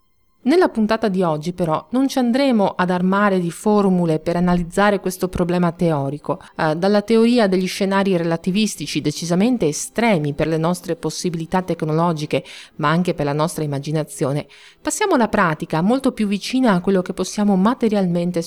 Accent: native